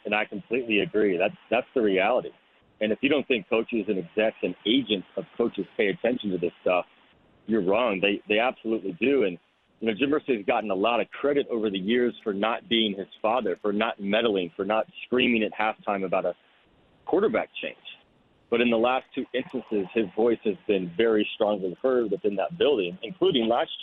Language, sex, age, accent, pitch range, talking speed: English, male, 40-59, American, 105-125 Hz, 200 wpm